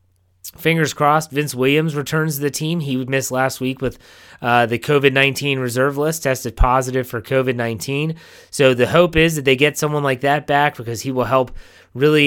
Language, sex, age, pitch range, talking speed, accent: English, male, 30-49, 125-150 Hz, 190 wpm, American